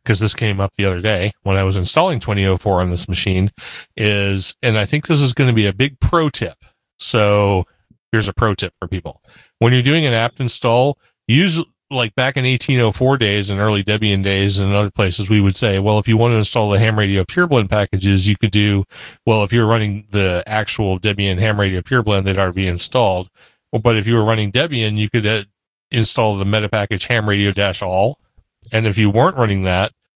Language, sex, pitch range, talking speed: English, male, 100-120 Hz, 215 wpm